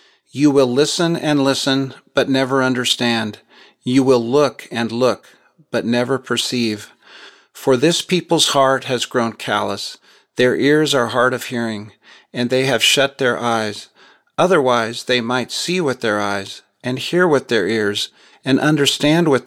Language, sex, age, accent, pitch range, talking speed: English, male, 40-59, American, 115-140 Hz, 155 wpm